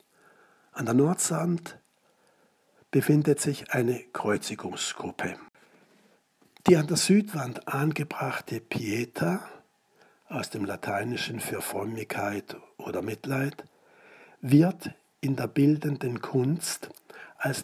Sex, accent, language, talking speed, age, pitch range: male, German, German, 90 wpm, 60-79, 115-150 Hz